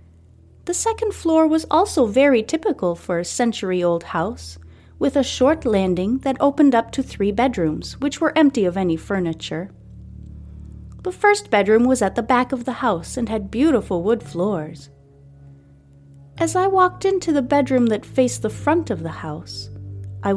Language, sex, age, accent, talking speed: English, female, 30-49, American, 165 wpm